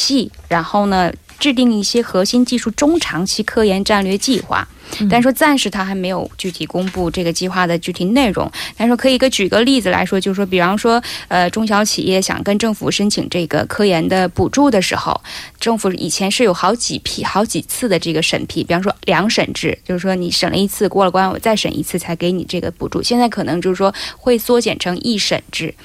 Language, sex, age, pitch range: Korean, female, 20-39, 180-230 Hz